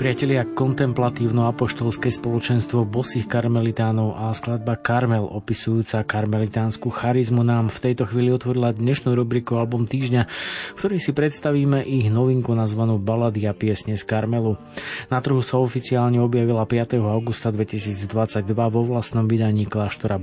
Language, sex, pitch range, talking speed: Slovak, male, 110-125 Hz, 135 wpm